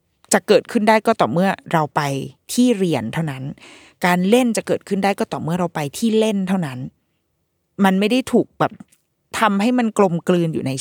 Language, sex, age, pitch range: Thai, female, 20-39, 155-215 Hz